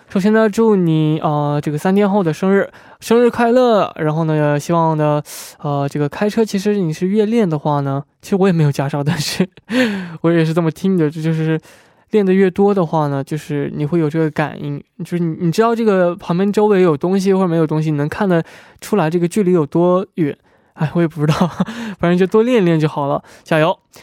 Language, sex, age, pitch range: Korean, male, 20-39, 155-195 Hz